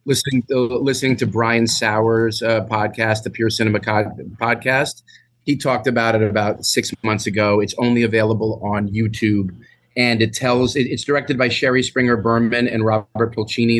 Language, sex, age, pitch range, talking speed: English, male, 30-49, 100-115 Hz, 170 wpm